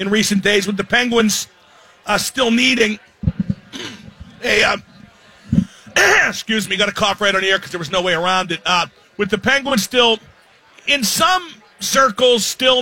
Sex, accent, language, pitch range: male, American, English, 205-250 Hz